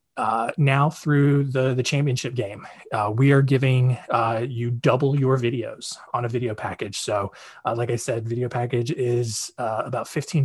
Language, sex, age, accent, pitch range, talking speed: English, male, 20-39, American, 120-145 Hz, 180 wpm